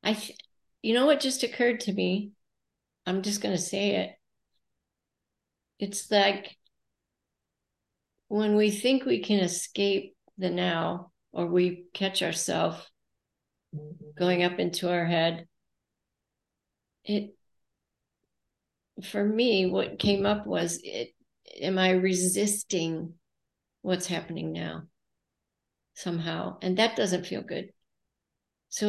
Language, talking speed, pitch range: English, 110 wpm, 165-200 Hz